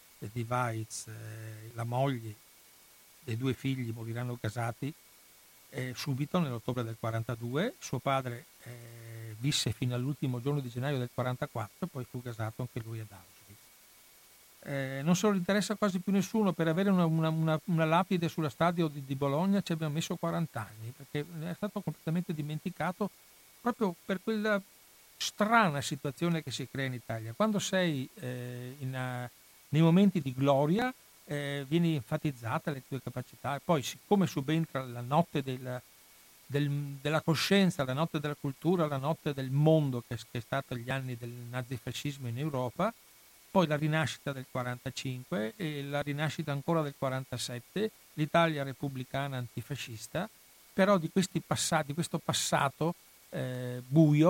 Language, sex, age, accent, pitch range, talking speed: Italian, male, 60-79, native, 125-165 Hz, 150 wpm